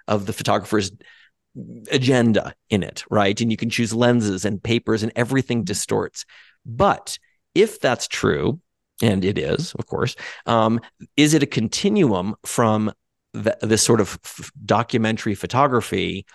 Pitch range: 105-120 Hz